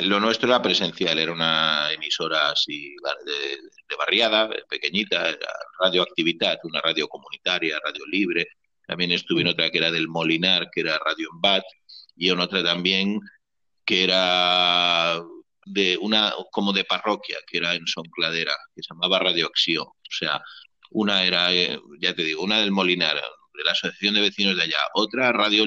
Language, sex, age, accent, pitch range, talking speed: English, male, 30-49, Spanish, 95-140 Hz, 160 wpm